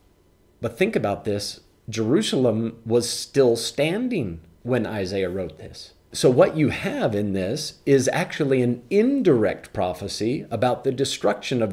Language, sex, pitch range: English, male, 105-135 Hz